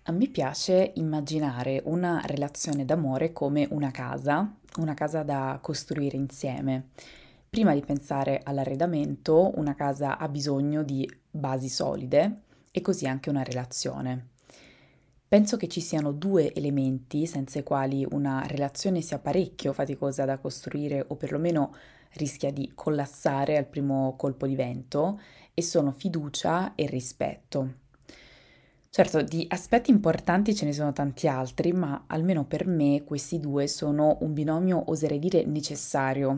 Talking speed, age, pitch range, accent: 135 wpm, 20-39, 135-170 Hz, native